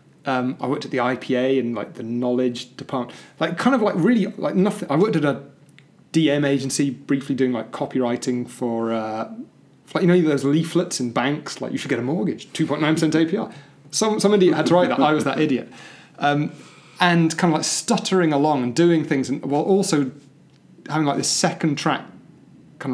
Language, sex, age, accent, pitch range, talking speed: English, male, 30-49, British, 135-170 Hz, 200 wpm